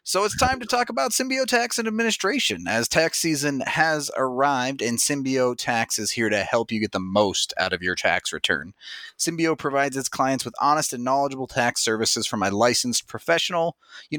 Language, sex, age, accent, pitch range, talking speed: English, male, 30-49, American, 120-155 Hz, 195 wpm